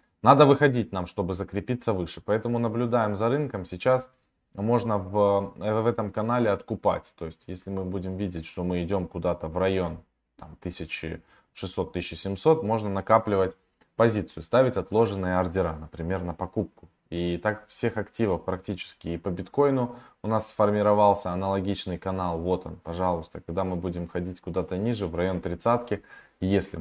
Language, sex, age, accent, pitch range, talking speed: Russian, male, 20-39, native, 90-110 Hz, 150 wpm